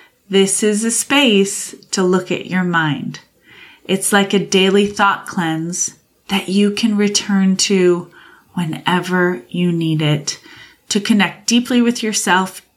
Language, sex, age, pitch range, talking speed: English, female, 30-49, 175-220 Hz, 135 wpm